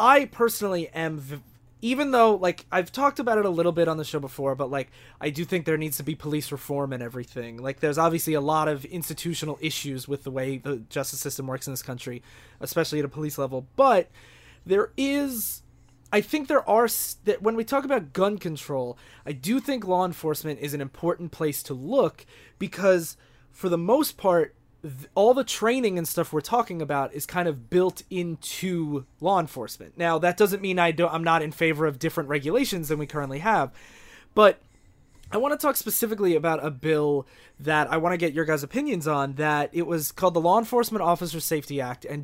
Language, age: English, 20-39